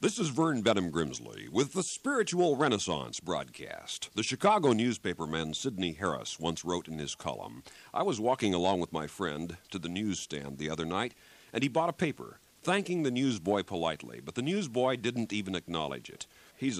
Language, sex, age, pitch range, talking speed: English, male, 50-69, 85-130 Hz, 180 wpm